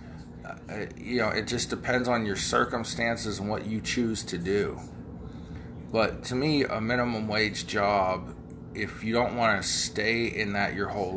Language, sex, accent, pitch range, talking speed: English, male, American, 85-110 Hz, 165 wpm